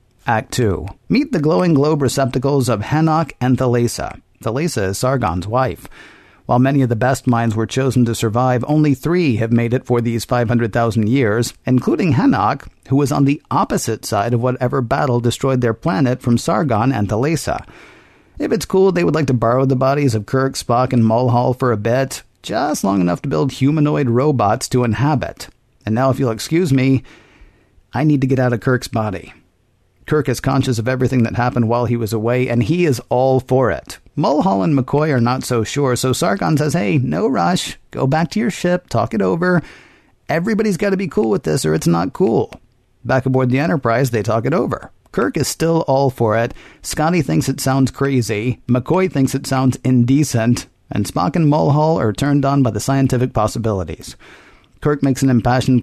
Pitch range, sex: 115-140 Hz, male